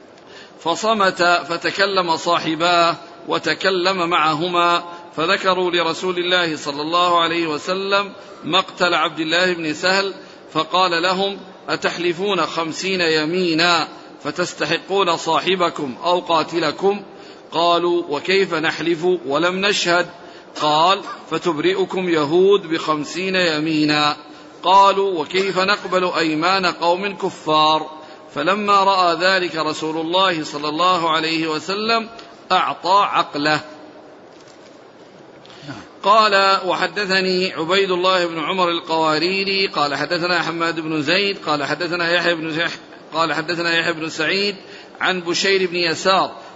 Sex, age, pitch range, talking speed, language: male, 50-69, 160-190 Hz, 100 wpm, Arabic